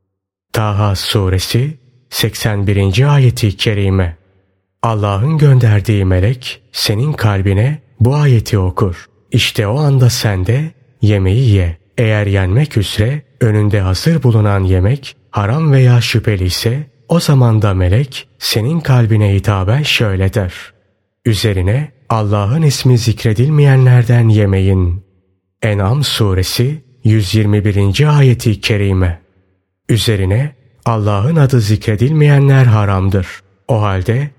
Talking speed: 100 wpm